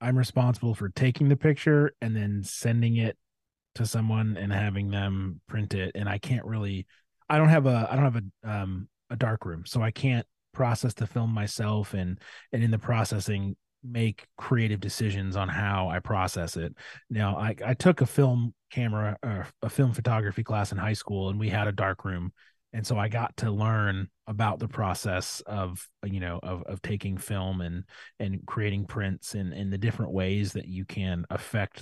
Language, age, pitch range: English, 30-49, 95-110 Hz